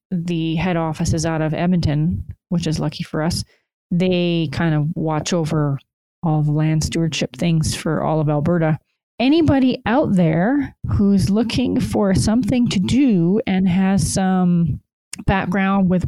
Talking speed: 150 wpm